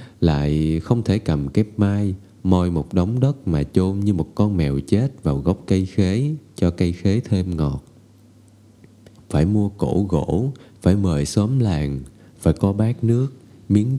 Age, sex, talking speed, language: 20-39, male, 165 wpm, Vietnamese